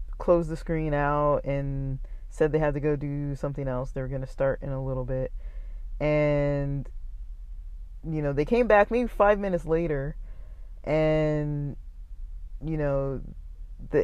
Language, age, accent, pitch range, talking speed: English, 20-39, American, 135-160 Hz, 150 wpm